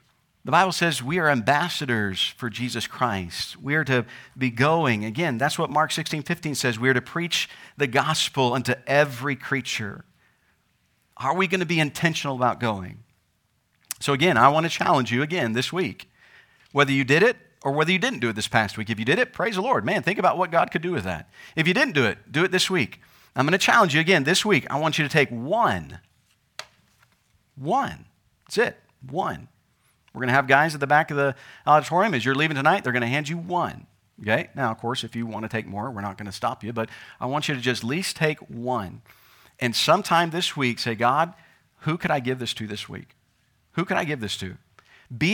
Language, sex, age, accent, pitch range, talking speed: English, male, 50-69, American, 120-165 Hz, 230 wpm